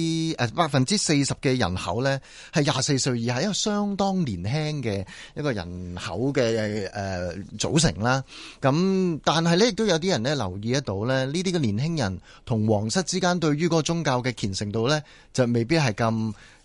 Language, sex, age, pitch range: Chinese, male, 30-49, 110-155 Hz